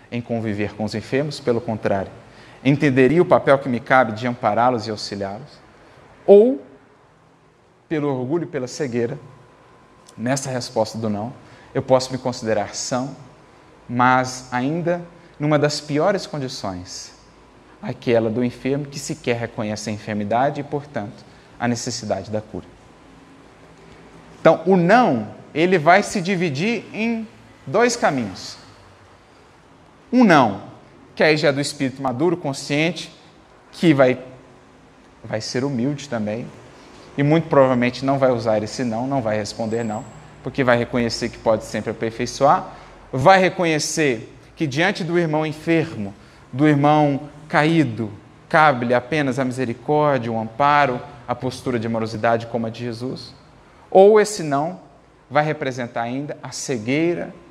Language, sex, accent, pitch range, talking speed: Portuguese, male, Brazilian, 115-150 Hz, 135 wpm